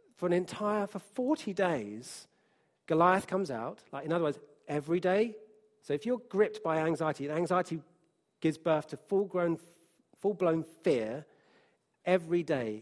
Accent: British